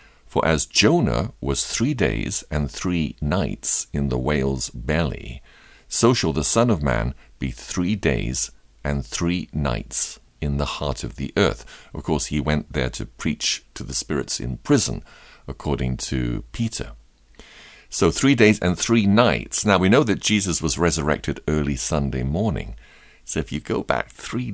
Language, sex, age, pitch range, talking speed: English, male, 50-69, 70-95 Hz, 165 wpm